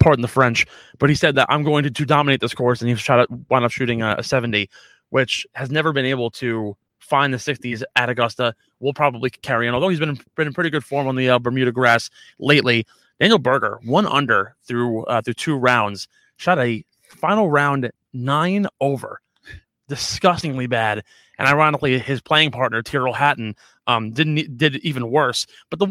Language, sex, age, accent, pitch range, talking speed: English, male, 20-39, American, 120-150 Hz, 190 wpm